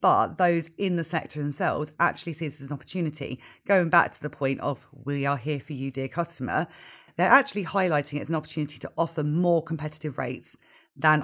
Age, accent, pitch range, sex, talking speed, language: 30-49, British, 135-155 Hz, female, 205 wpm, English